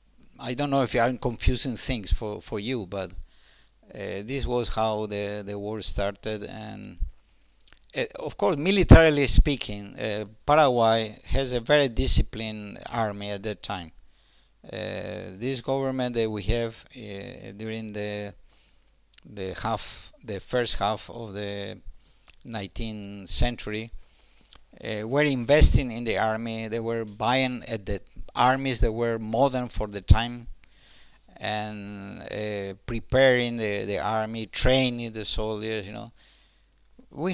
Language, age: English, 50-69